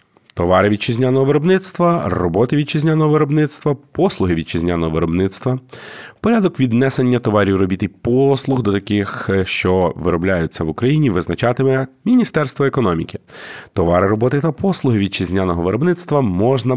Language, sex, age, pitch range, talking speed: Ukrainian, male, 30-49, 95-135 Hz, 110 wpm